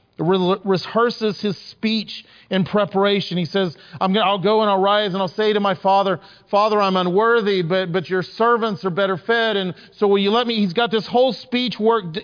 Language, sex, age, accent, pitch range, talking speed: English, male, 40-59, American, 180-235 Hz, 210 wpm